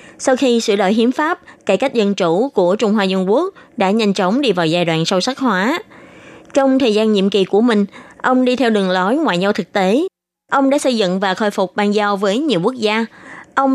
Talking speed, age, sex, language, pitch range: 240 wpm, 20-39, female, Vietnamese, 195-255 Hz